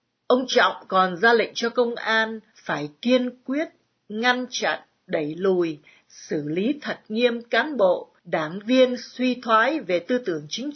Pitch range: 180-265 Hz